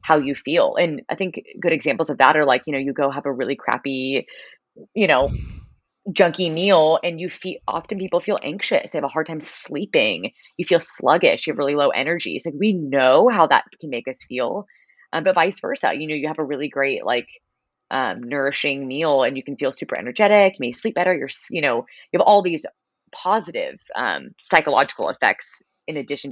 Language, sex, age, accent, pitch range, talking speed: English, female, 20-39, American, 140-190 Hz, 210 wpm